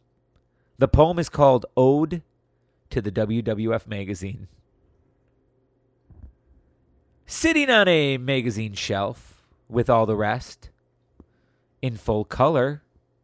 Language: English